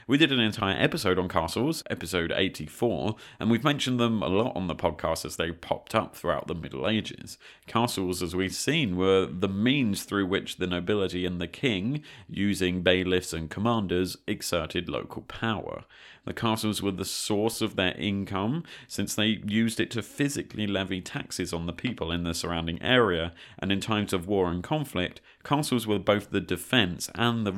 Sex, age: male, 30-49